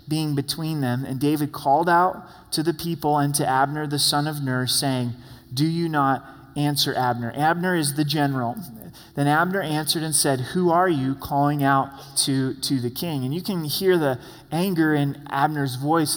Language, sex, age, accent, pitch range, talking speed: English, male, 30-49, American, 130-165 Hz, 185 wpm